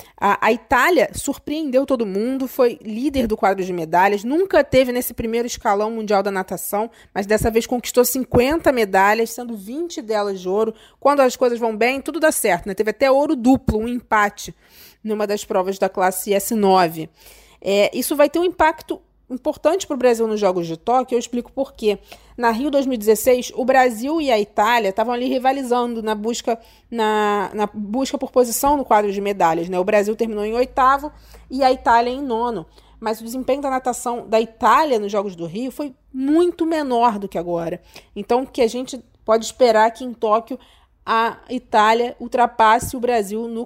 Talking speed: 185 wpm